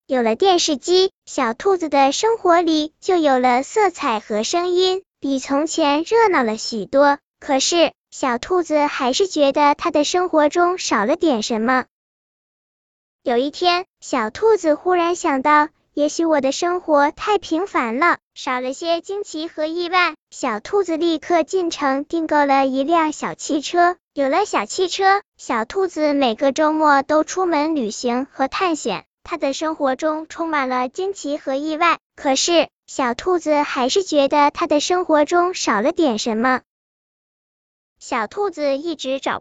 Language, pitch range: Chinese, 280-360 Hz